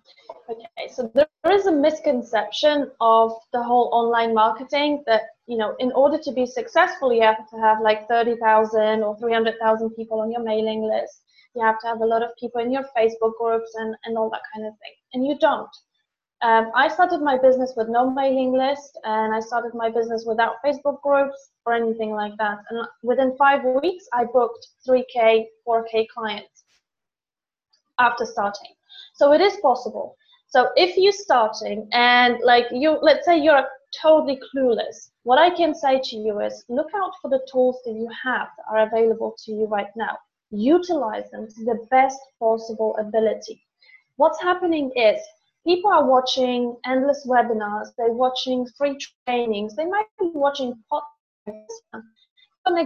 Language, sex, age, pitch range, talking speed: English, female, 20-39, 225-290 Hz, 170 wpm